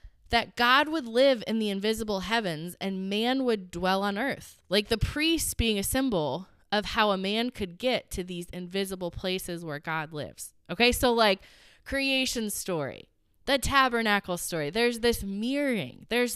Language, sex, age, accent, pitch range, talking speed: English, female, 20-39, American, 175-240 Hz, 165 wpm